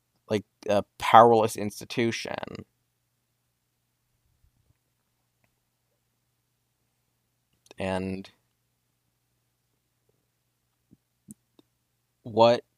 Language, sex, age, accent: English, male, 20-39, American